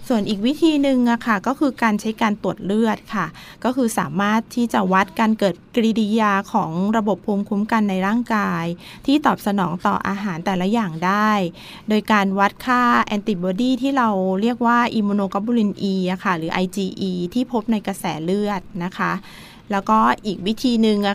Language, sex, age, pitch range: Thai, female, 20-39, 190-235 Hz